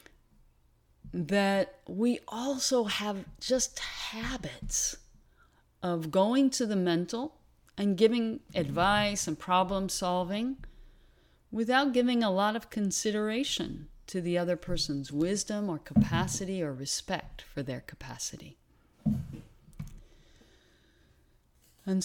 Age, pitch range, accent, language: 40-59, 140-225 Hz, American, English